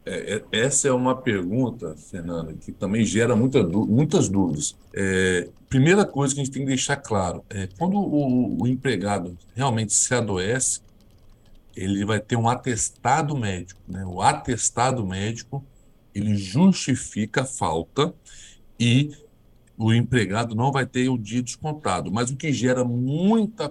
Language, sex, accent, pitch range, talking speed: Portuguese, male, Brazilian, 110-155 Hz, 150 wpm